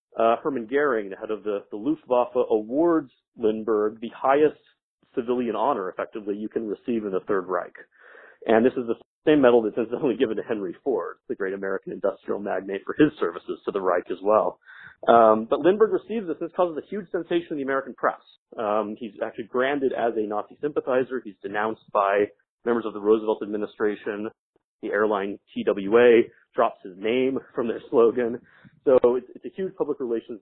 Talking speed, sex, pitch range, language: 185 wpm, male, 115-185 Hz, English